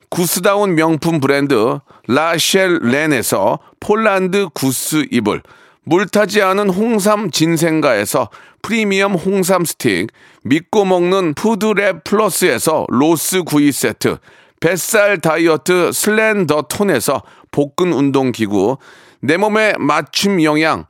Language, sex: Korean, male